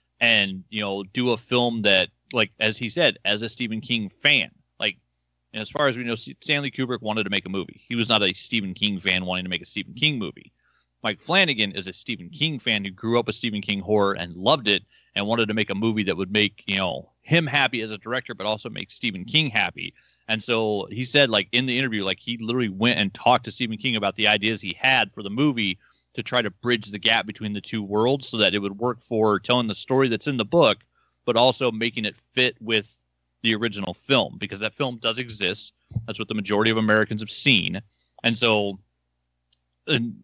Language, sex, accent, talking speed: English, male, American, 235 wpm